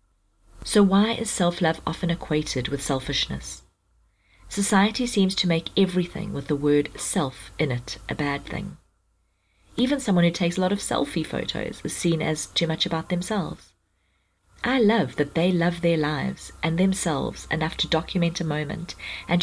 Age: 40-59